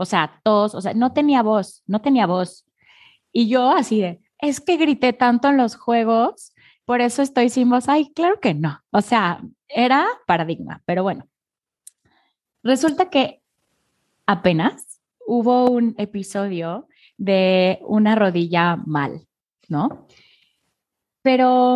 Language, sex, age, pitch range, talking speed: Spanish, female, 20-39, 185-255 Hz, 135 wpm